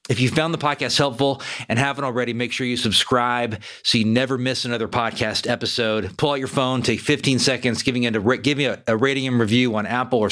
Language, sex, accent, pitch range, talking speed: English, male, American, 115-145 Hz, 215 wpm